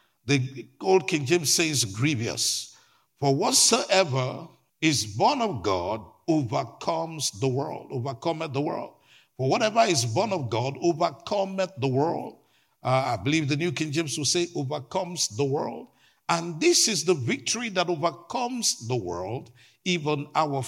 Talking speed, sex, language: 145 wpm, male, English